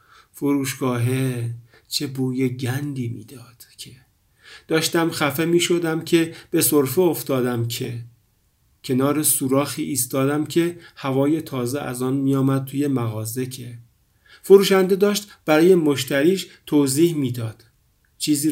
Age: 50-69